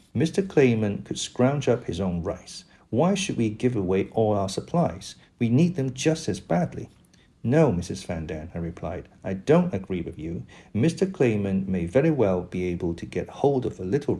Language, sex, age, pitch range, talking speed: English, male, 50-69, 90-125 Hz, 190 wpm